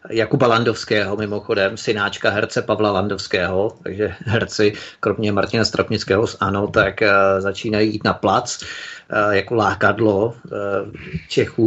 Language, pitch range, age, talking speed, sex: Czech, 105-115 Hz, 30-49, 110 wpm, male